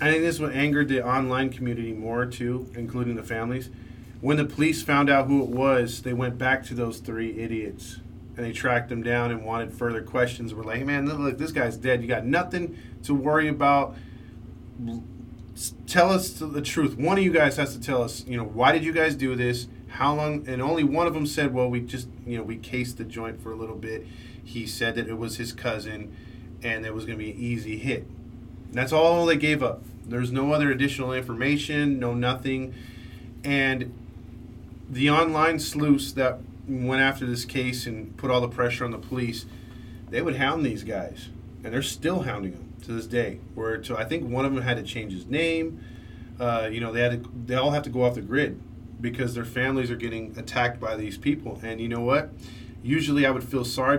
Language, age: English, 20-39